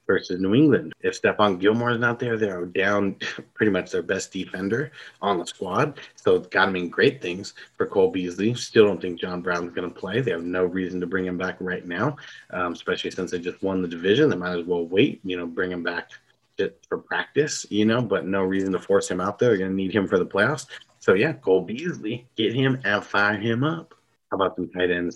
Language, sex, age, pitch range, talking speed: English, male, 30-49, 90-110 Hz, 235 wpm